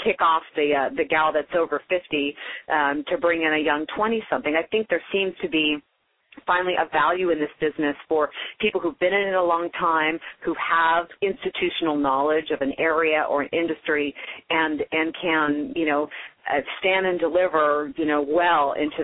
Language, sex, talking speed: English, female, 185 wpm